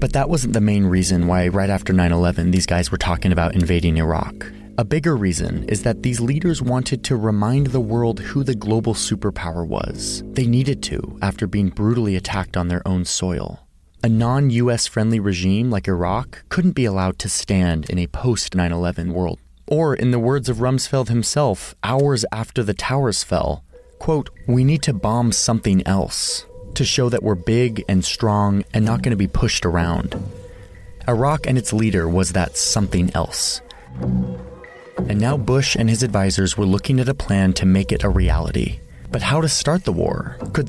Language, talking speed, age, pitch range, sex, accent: English, 180 wpm, 30-49, 95-125 Hz, male, American